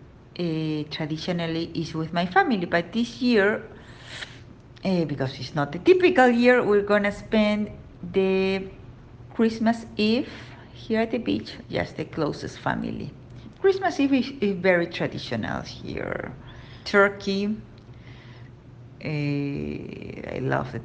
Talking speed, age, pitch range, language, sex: 125 wpm, 50-69, 130-175 Hz, English, female